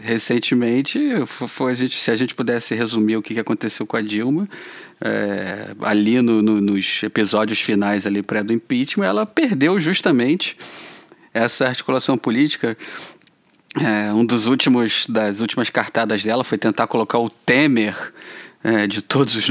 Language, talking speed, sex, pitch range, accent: Portuguese, 150 wpm, male, 110-145 Hz, Brazilian